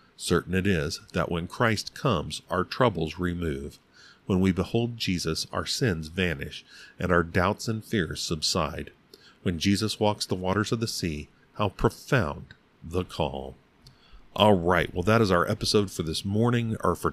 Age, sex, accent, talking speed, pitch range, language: 40-59, male, American, 165 wpm, 85-105 Hz, English